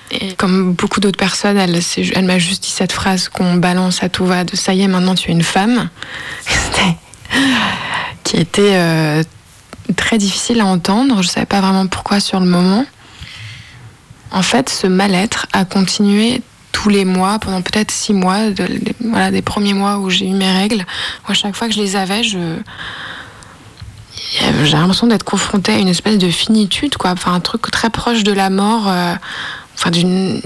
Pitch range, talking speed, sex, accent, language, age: 180-205 Hz, 190 wpm, female, French, French, 20-39